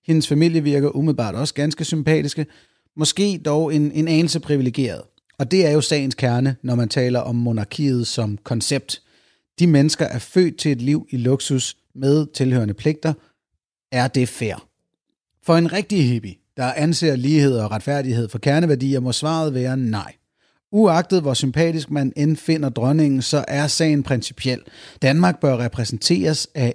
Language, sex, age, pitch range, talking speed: Danish, male, 30-49, 125-155 Hz, 155 wpm